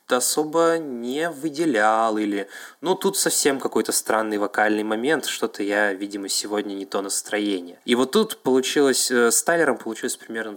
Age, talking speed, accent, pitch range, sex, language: 20-39, 155 wpm, native, 100-120 Hz, male, Russian